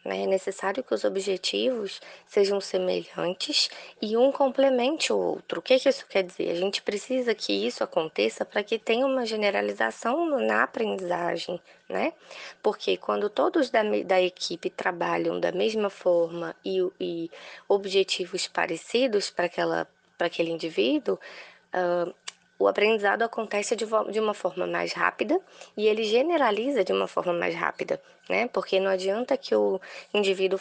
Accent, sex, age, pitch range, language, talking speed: Brazilian, female, 20-39, 180-225 Hz, Portuguese, 140 wpm